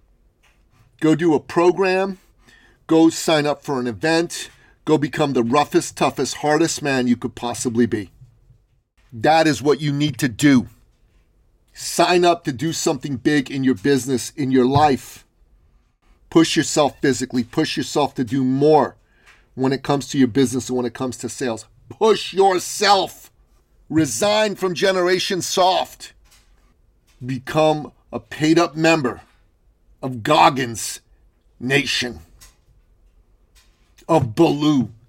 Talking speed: 130 wpm